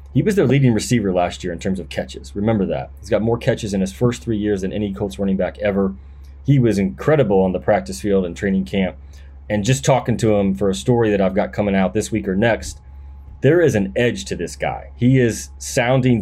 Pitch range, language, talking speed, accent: 85-115 Hz, English, 240 wpm, American